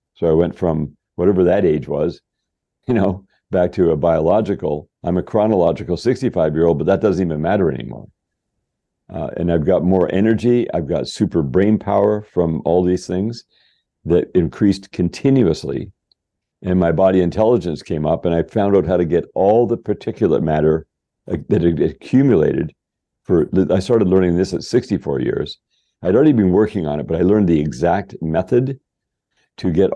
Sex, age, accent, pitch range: male, 50-69, American, 85-105 Hz